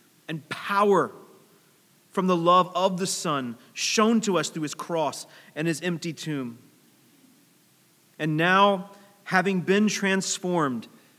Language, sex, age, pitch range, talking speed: English, male, 30-49, 140-185 Hz, 125 wpm